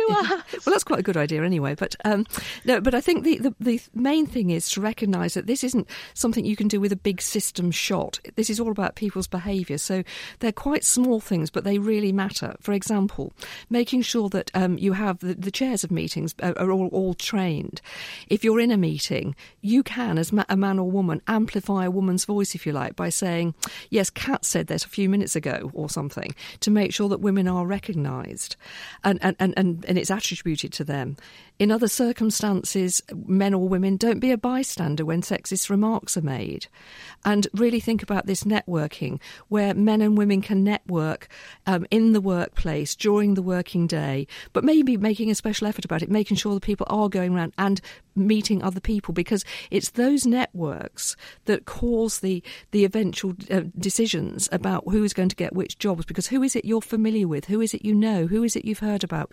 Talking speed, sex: 205 wpm, female